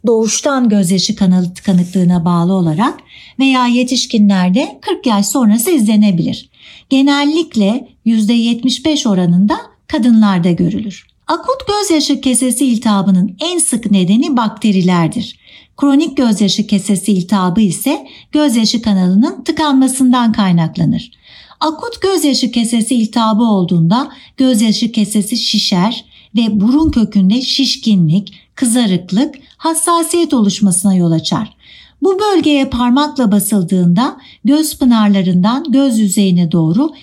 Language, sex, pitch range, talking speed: Turkish, female, 200-275 Hz, 95 wpm